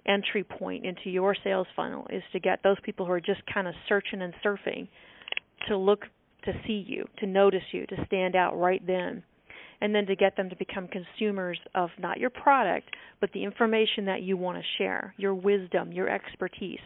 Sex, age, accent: female, 40-59, American